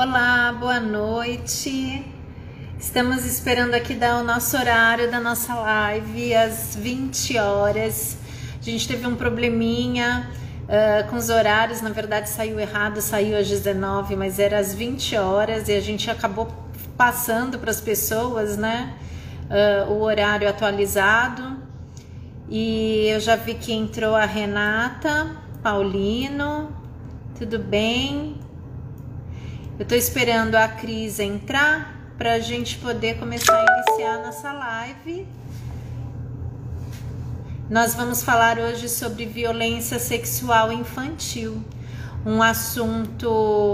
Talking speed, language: 120 wpm, Portuguese